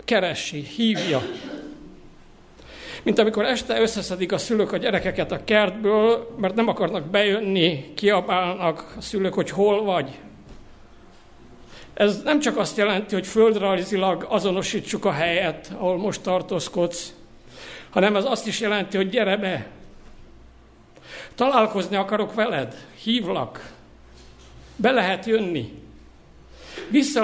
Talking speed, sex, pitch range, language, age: 110 wpm, male, 170-210 Hz, Hungarian, 60-79